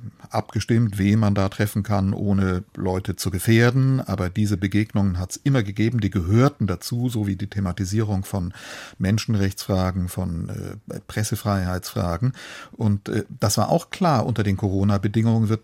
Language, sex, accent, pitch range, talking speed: German, male, German, 100-120 Hz, 150 wpm